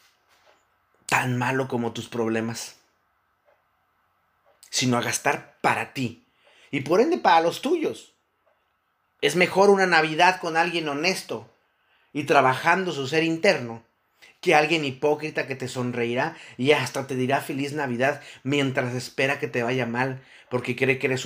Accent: Mexican